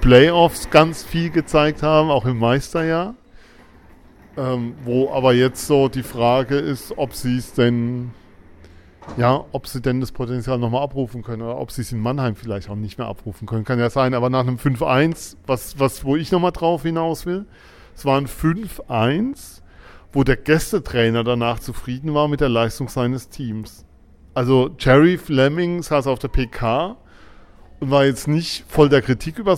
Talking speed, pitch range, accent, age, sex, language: 170 wpm, 125-155 Hz, German, 40-59, male, German